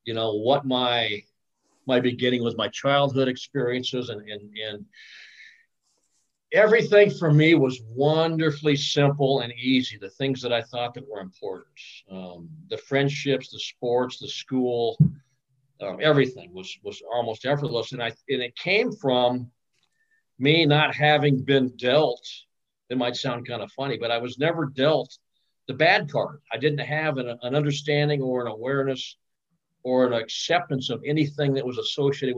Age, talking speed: 50-69, 155 wpm